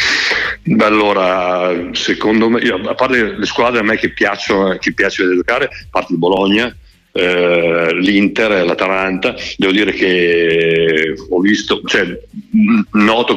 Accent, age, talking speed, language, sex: native, 60-79, 125 wpm, Italian, male